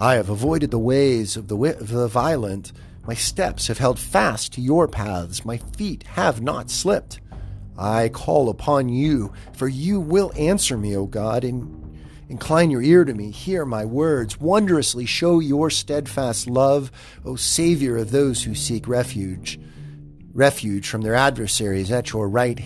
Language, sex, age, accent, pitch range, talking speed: English, male, 40-59, American, 105-140 Hz, 165 wpm